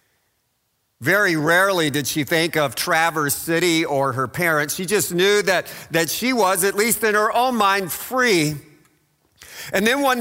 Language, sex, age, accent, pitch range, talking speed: English, male, 50-69, American, 135-215 Hz, 165 wpm